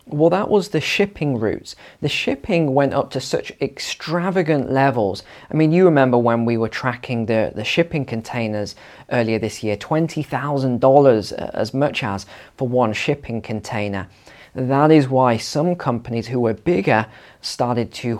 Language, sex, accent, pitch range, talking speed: English, male, British, 115-155 Hz, 155 wpm